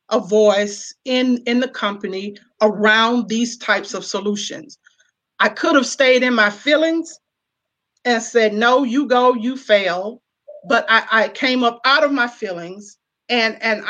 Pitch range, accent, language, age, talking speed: 215-250 Hz, American, English, 40-59, 155 wpm